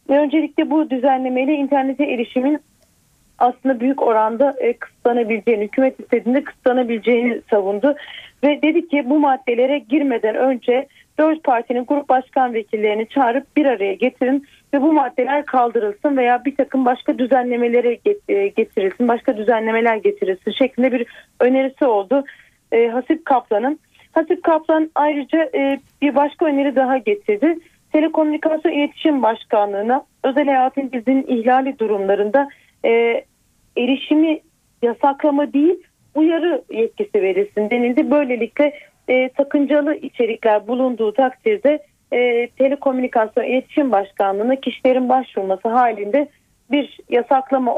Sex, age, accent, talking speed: female, 40-59, native, 110 wpm